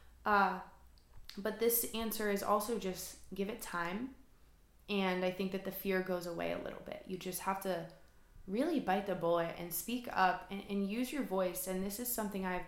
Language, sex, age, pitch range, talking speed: English, female, 20-39, 185-230 Hz, 200 wpm